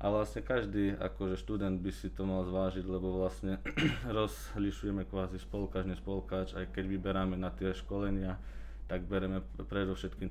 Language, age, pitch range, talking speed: Slovak, 20-39, 90-100 Hz, 150 wpm